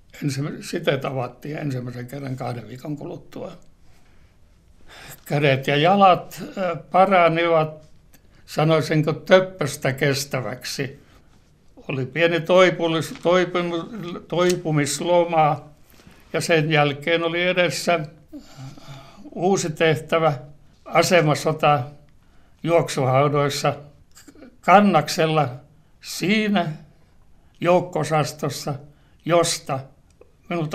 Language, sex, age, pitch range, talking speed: Finnish, male, 60-79, 135-165 Hz, 60 wpm